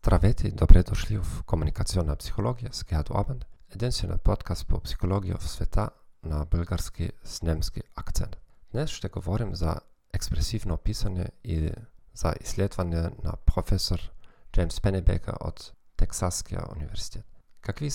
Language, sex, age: Bulgarian, male, 40-59